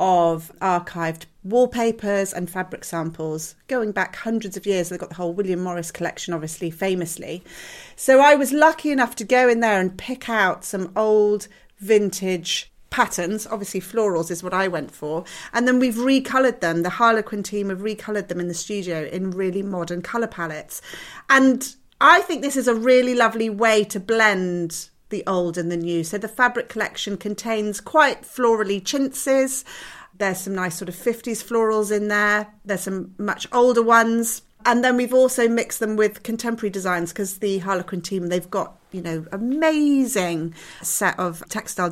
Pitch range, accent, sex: 180-235 Hz, British, female